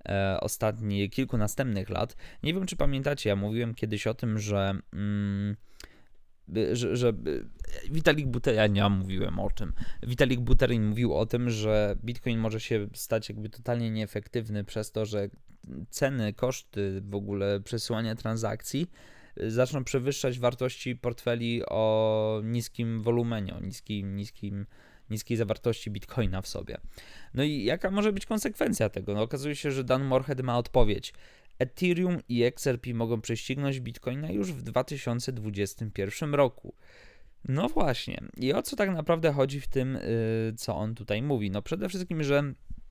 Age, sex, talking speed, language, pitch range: 20-39, male, 135 wpm, Polish, 105-130 Hz